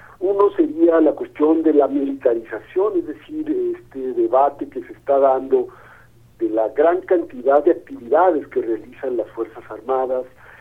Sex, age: male, 50-69